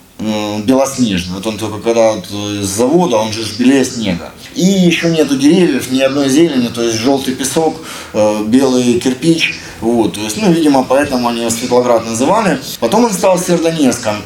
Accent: native